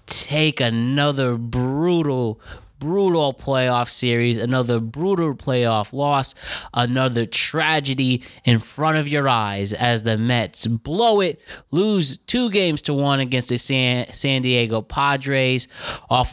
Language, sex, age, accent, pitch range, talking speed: English, male, 20-39, American, 115-145 Hz, 120 wpm